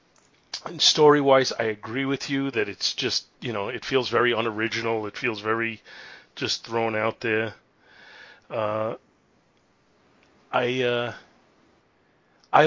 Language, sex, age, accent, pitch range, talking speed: English, male, 40-59, American, 110-130 Hz, 115 wpm